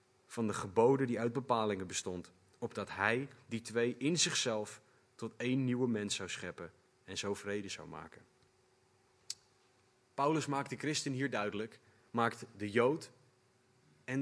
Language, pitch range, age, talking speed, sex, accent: Dutch, 110-135 Hz, 30-49, 145 wpm, male, Dutch